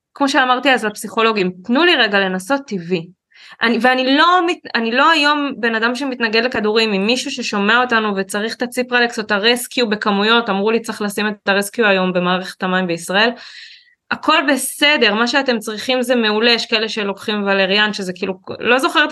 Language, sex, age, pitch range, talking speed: Hebrew, female, 20-39, 200-270 Hz, 170 wpm